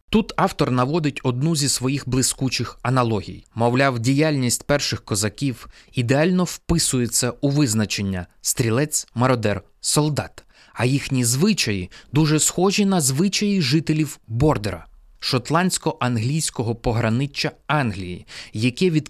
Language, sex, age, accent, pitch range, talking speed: Ukrainian, male, 20-39, native, 115-160 Hz, 105 wpm